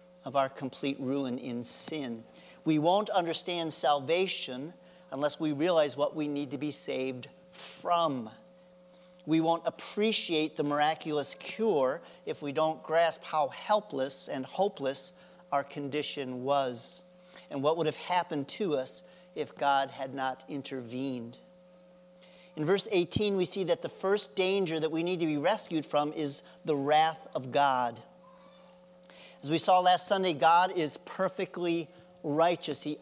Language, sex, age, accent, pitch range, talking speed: English, male, 40-59, American, 145-180 Hz, 145 wpm